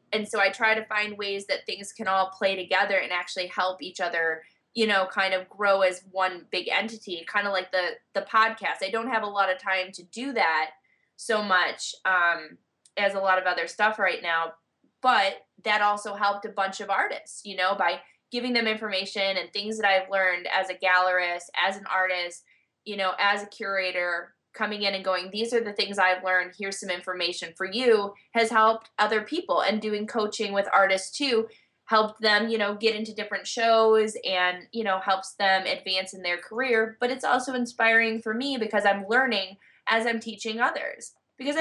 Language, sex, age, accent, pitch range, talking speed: English, female, 20-39, American, 185-220 Hz, 200 wpm